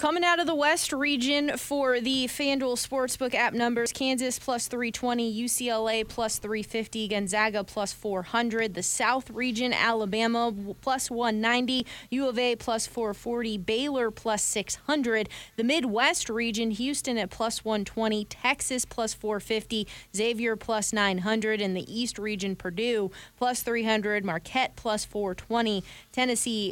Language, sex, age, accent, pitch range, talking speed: English, female, 20-39, American, 205-245 Hz, 130 wpm